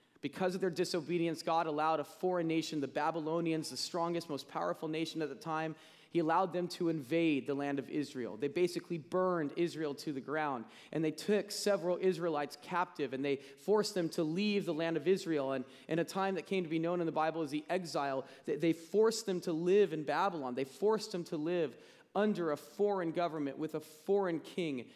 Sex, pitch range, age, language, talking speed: male, 150-190 Hz, 30-49, English, 205 wpm